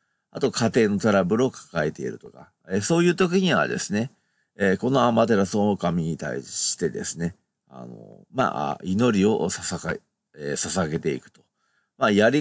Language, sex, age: Japanese, male, 50-69